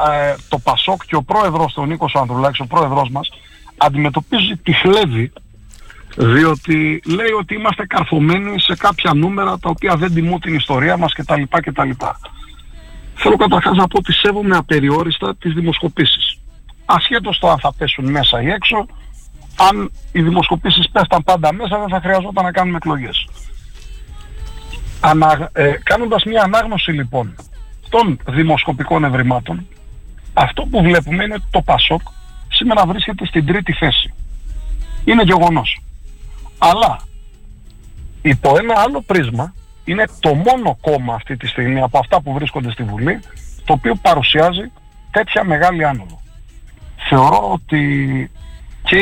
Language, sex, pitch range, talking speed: Greek, male, 130-175 Hz, 130 wpm